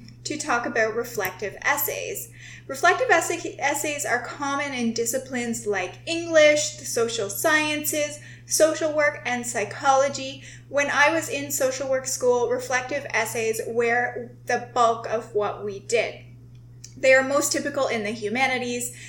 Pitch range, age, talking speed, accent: 215-295 Hz, 20-39, 135 wpm, American